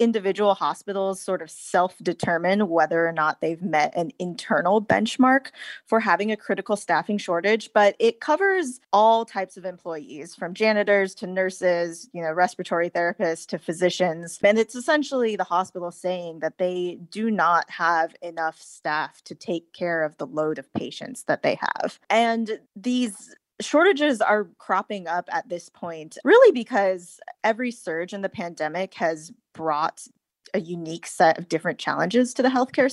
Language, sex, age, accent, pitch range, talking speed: English, female, 20-39, American, 170-220 Hz, 160 wpm